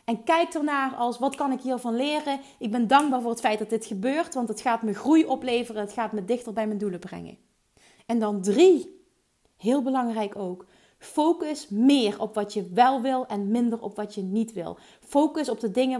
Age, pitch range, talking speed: 30-49, 210-260 Hz, 210 wpm